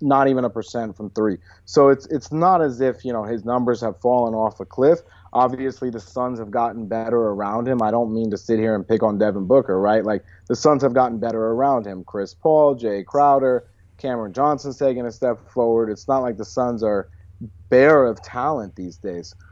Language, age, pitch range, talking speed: English, 30-49, 105-130 Hz, 215 wpm